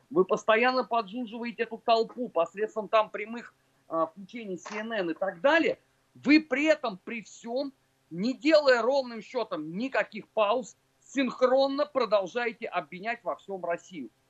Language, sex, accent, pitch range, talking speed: Russian, male, native, 195-270 Hz, 130 wpm